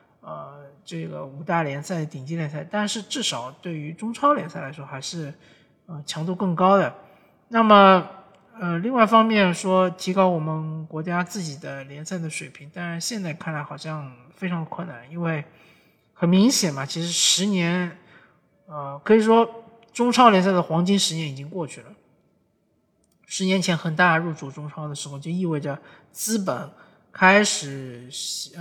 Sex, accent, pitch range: male, native, 150-190 Hz